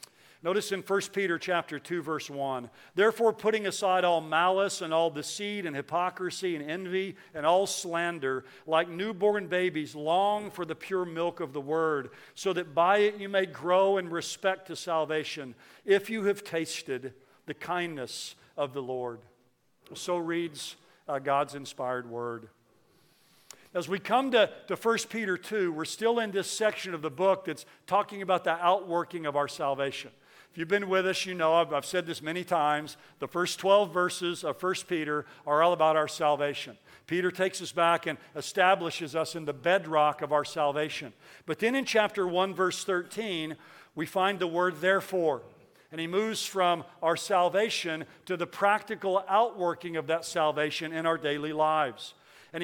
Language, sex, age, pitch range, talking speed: English, male, 50-69, 155-190 Hz, 175 wpm